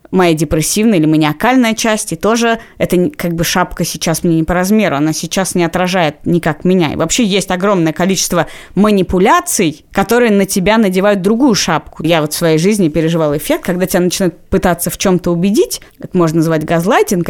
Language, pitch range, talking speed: Russian, 170-215 Hz, 180 wpm